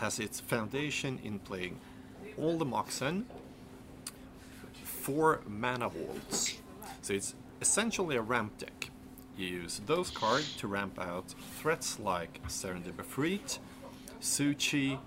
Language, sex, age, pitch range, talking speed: English, male, 30-49, 95-130 Hz, 110 wpm